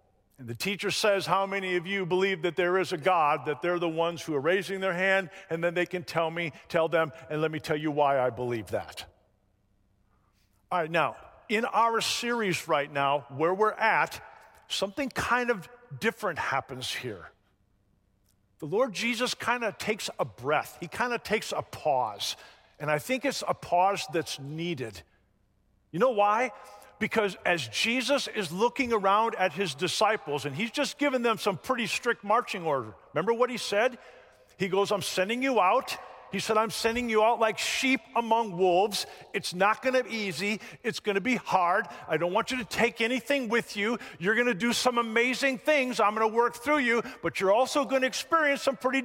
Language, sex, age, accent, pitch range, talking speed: English, male, 50-69, American, 165-235 Hz, 200 wpm